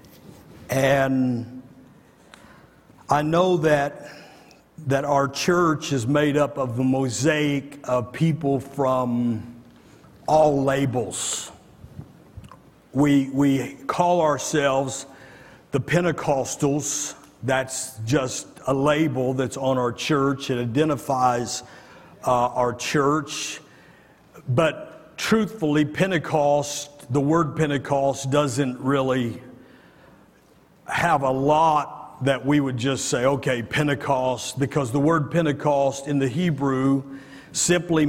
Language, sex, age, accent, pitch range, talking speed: English, male, 50-69, American, 130-155 Hz, 100 wpm